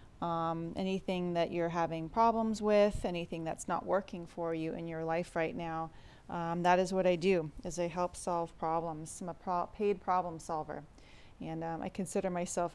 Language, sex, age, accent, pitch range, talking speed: English, female, 30-49, American, 165-195 Hz, 185 wpm